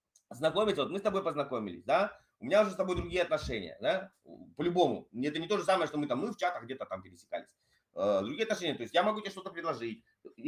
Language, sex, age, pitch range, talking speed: Russian, male, 20-39, 155-230 Hz, 225 wpm